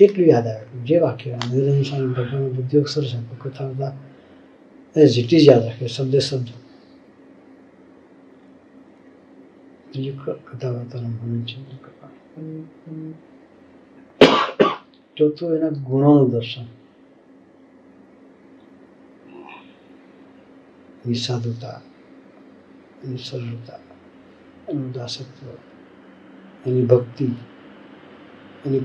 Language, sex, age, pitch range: Gujarati, male, 60-79, 120-140 Hz